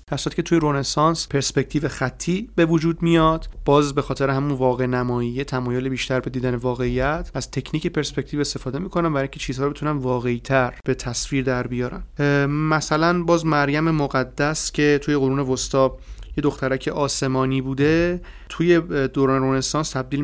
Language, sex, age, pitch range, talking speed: Persian, male, 30-49, 130-155 Hz, 155 wpm